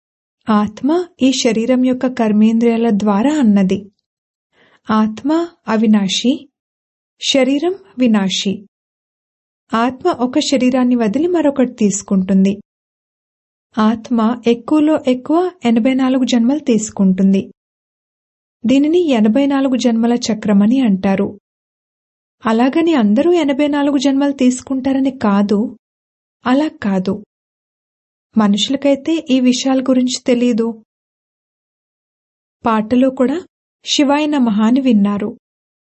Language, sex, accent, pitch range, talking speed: English, female, Indian, 215-275 Hz, 70 wpm